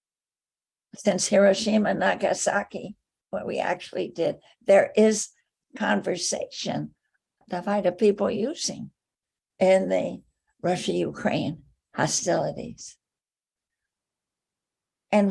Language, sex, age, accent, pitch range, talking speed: English, female, 60-79, American, 185-220 Hz, 80 wpm